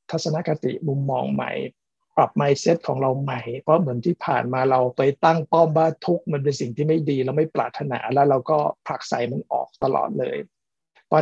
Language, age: Thai, 60-79